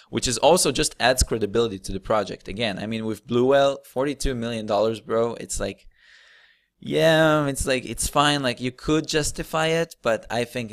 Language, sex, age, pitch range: English, male, 20-39, 105-125 Hz